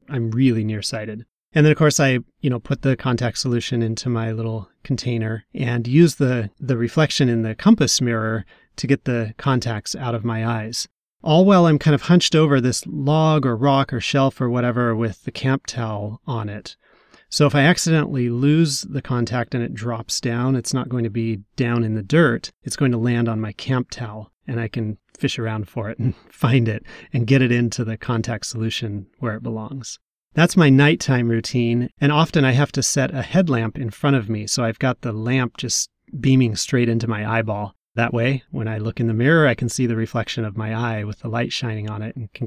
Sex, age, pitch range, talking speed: male, 30-49, 115-135 Hz, 220 wpm